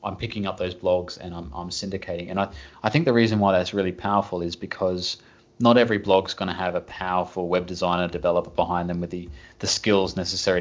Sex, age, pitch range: male, 20-39, 90-105 Hz